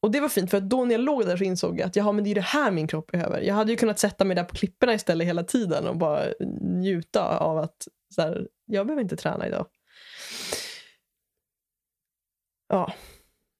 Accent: native